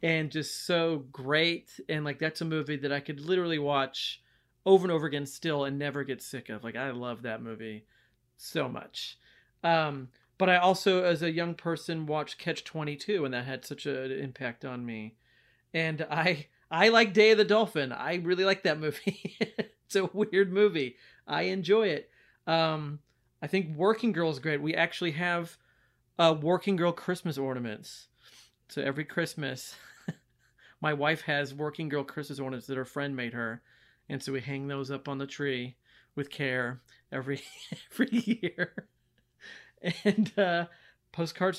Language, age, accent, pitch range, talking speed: English, 40-59, American, 135-170 Hz, 170 wpm